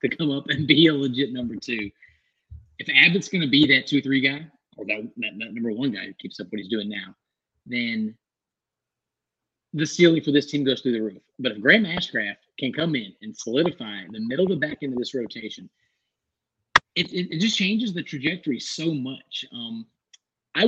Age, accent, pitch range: 30-49, American, 115-165 Hz